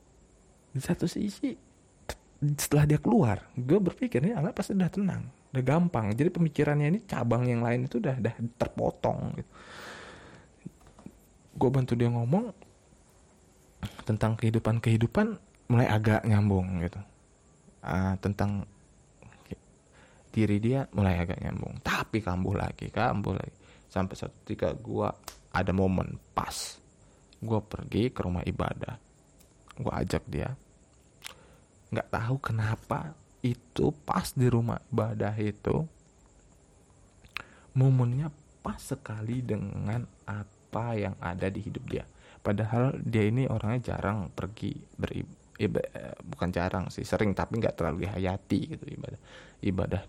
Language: Indonesian